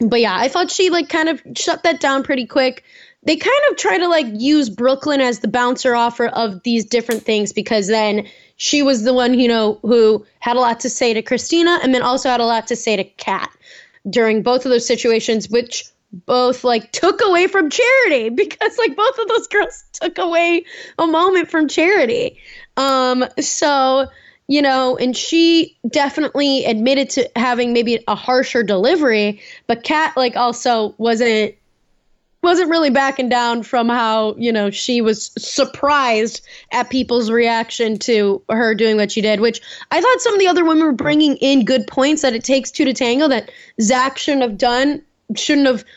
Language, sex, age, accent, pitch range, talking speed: English, female, 10-29, American, 235-315 Hz, 190 wpm